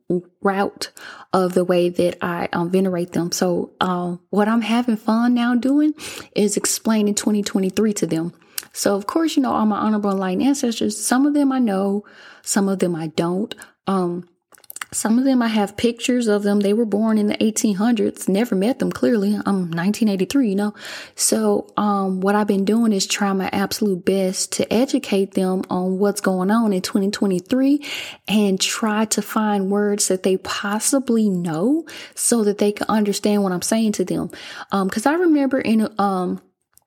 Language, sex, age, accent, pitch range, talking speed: English, female, 10-29, American, 195-230 Hz, 180 wpm